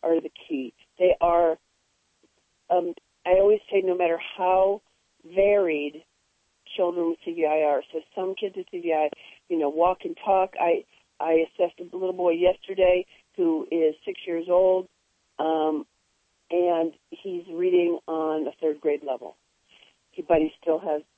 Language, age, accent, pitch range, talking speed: English, 40-59, American, 155-200 Hz, 150 wpm